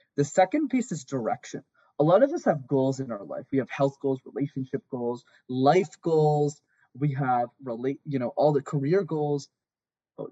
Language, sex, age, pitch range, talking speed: English, male, 20-39, 130-155 Hz, 185 wpm